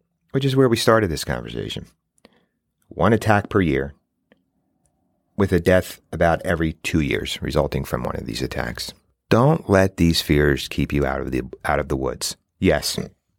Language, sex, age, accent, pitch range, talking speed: English, male, 40-59, American, 80-100 Hz, 170 wpm